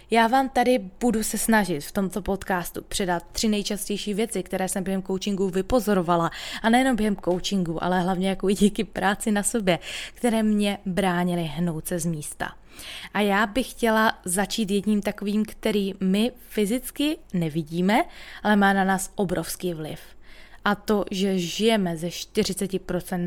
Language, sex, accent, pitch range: Czech, female, native, 180-225 Hz